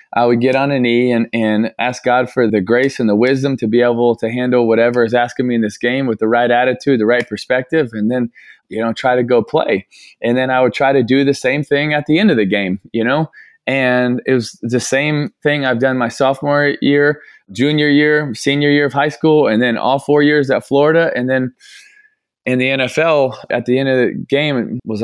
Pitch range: 120-145 Hz